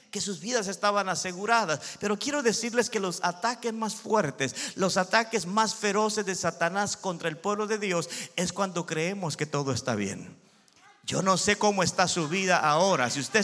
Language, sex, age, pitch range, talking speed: Spanish, male, 50-69, 170-210 Hz, 185 wpm